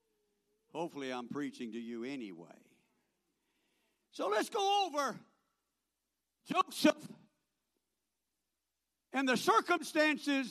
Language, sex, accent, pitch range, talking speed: English, male, American, 230-340 Hz, 80 wpm